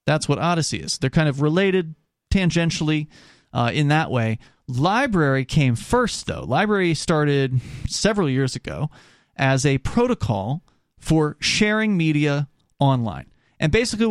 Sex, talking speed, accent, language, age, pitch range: male, 130 wpm, American, English, 30-49, 125-180 Hz